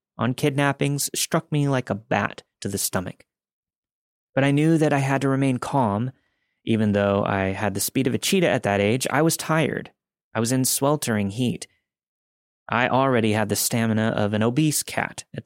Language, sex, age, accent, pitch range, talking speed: English, male, 30-49, American, 105-135 Hz, 190 wpm